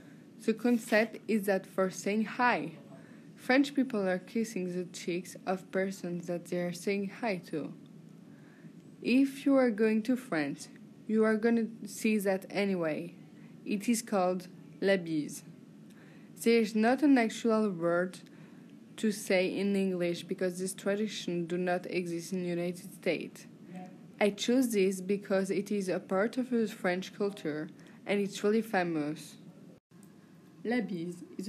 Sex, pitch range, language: female, 180-220 Hz, English